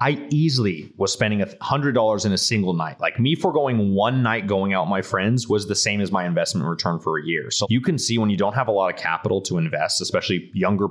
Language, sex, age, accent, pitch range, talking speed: English, male, 30-49, American, 90-120 Hz, 260 wpm